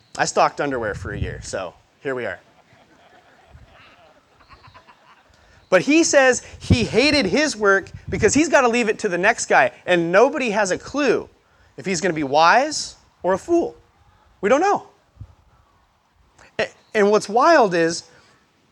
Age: 30-49